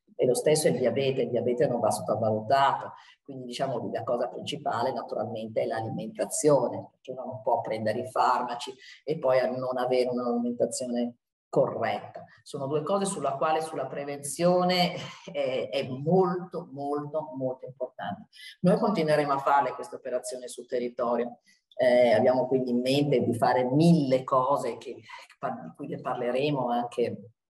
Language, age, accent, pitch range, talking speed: Italian, 40-59, native, 125-150 Hz, 150 wpm